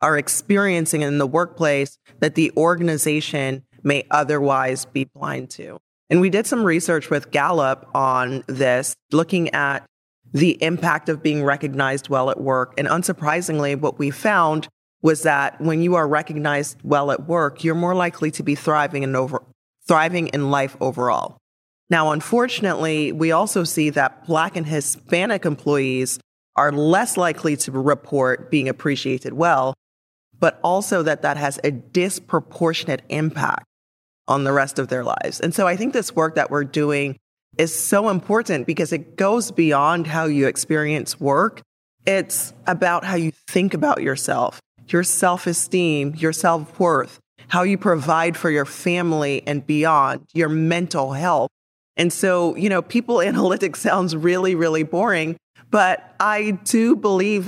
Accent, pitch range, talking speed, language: American, 140-175 Hz, 150 wpm, English